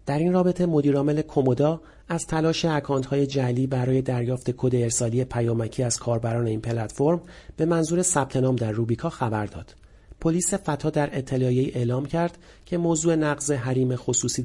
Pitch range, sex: 120-150 Hz, male